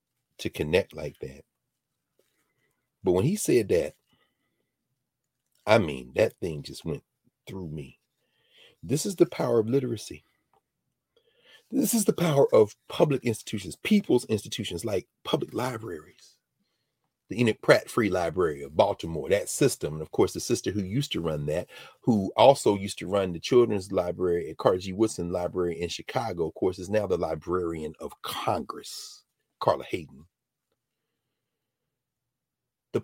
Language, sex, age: English, male, 40-59